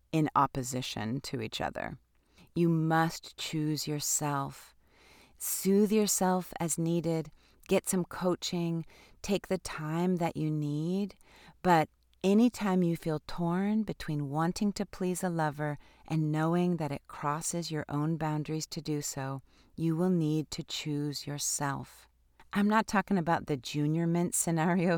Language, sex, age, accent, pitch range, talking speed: English, female, 30-49, American, 150-180 Hz, 140 wpm